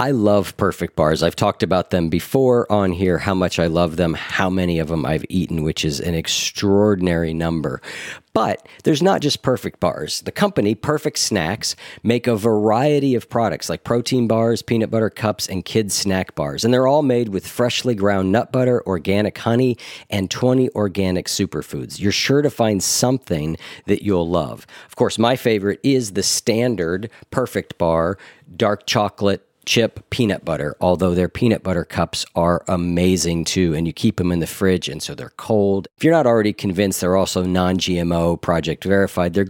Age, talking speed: 50-69, 180 wpm